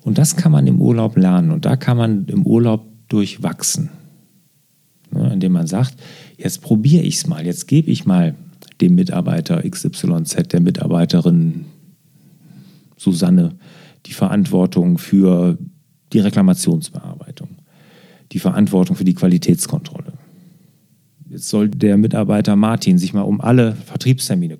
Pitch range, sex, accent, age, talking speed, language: 125-170 Hz, male, German, 40-59, 125 wpm, German